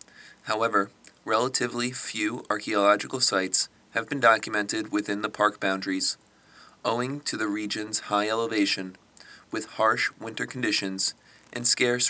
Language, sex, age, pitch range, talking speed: English, male, 30-49, 100-120 Hz, 120 wpm